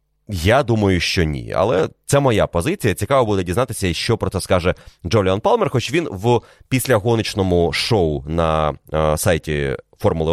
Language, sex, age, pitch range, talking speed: Ukrainian, male, 30-49, 90-120 Hz, 145 wpm